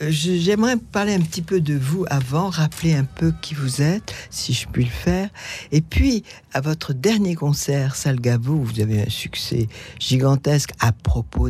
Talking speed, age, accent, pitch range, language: 185 wpm, 60-79, French, 130-165 Hz, French